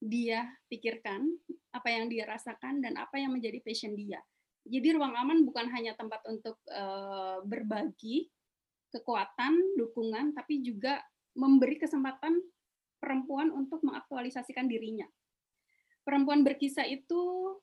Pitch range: 230-295 Hz